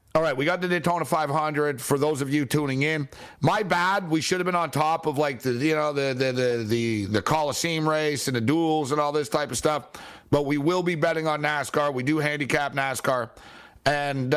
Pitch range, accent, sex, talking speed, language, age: 130-155 Hz, American, male, 230 wpm, English, 60-79